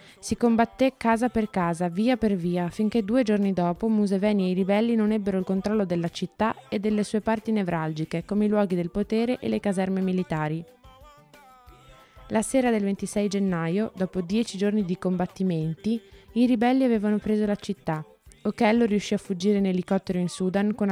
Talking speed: 175 wpm